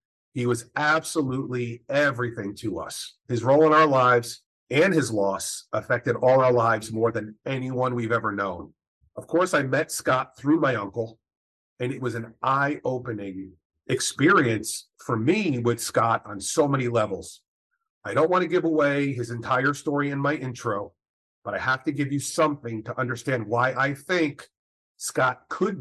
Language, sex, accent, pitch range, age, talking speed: English, male, American, 115-145 Hz, 40-59, 170 wpm